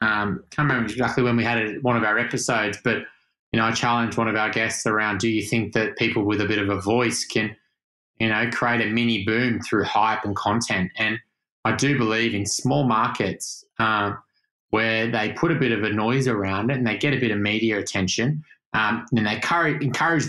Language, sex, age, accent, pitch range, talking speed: English, male, 20-39, Australian, 110-130 Hz, 225 wpm